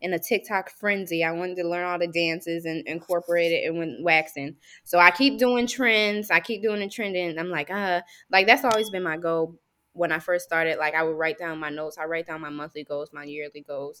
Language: English